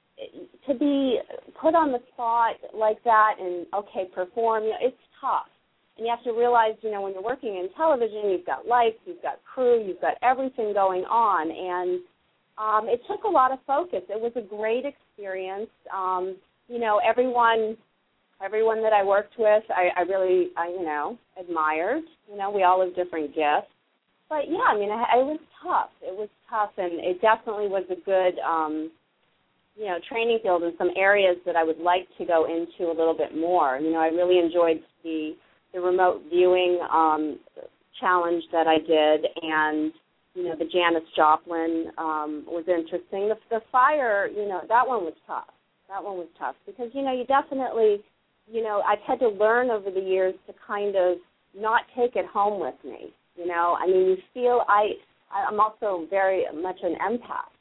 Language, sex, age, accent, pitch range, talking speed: English, female, 30-49, American, 180-235 Hz, 190 wpm